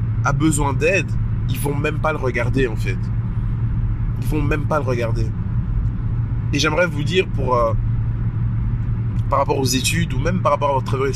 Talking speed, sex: 185 wpm, male